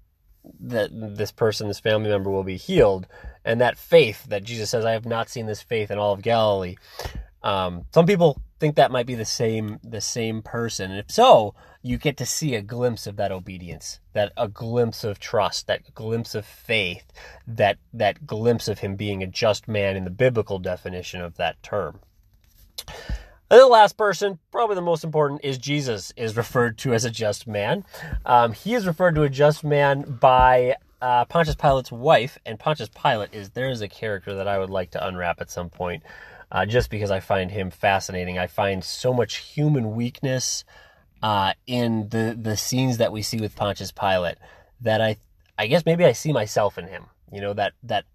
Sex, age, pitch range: male, 30-49, 100-130 Hz